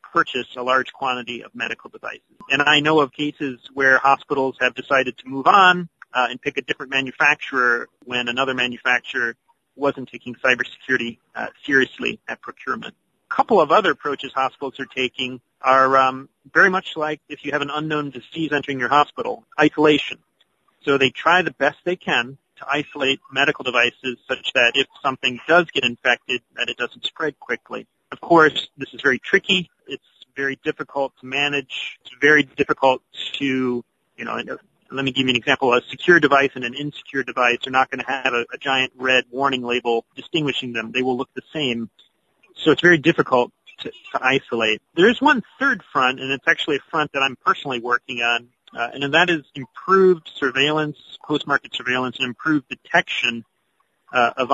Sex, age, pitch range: male, 40-59, 125-150 Hz